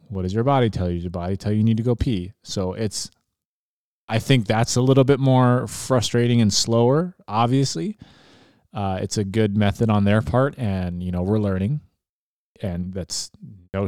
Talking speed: 195 wpm